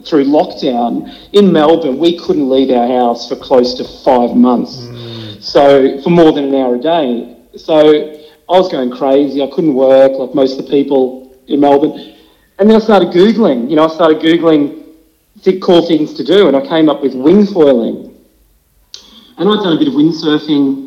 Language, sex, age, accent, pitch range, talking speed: English, male, 40-59, Australian, 135-180 Hz, 190 wpm